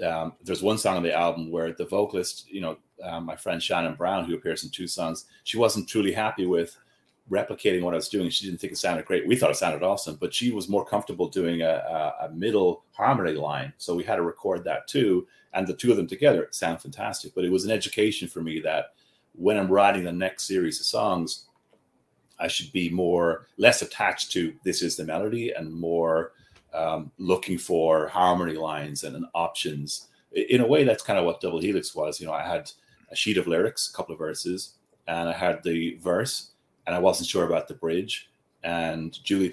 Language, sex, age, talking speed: English, male, 30-49, 215 wpm